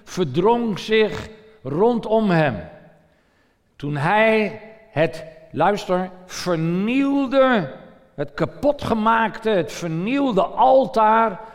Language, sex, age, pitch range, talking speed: Dutch, male, 50-69, 180-235 Hz, 75 wpm